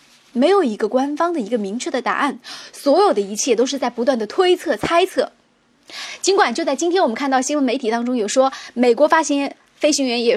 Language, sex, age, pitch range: Chinese, female, 20-39, 230-320 Hz